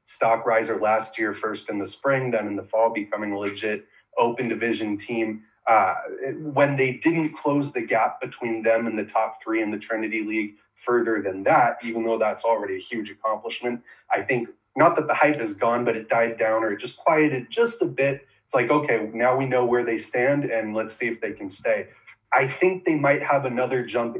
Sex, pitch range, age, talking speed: male, 110-125 Hz, 30-49, 215 wpm